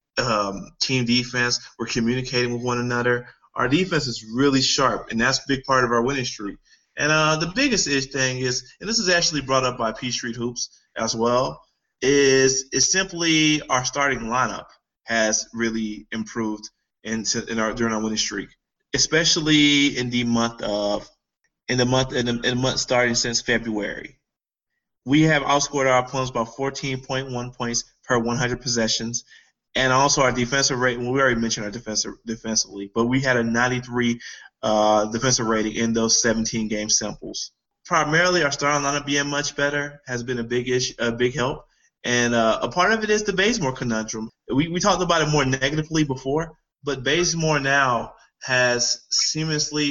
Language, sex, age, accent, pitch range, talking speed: English, male, 20-39, American, 120-140 Hz, 175 wpm